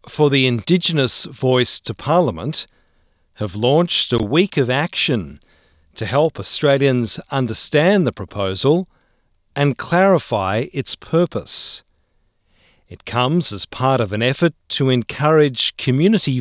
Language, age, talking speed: English, 50-69, 115 wpm